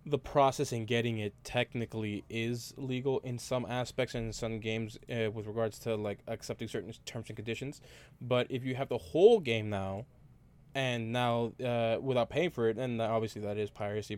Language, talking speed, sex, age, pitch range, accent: English, 190 wpm, male, 20-39, 110-130 Hz, American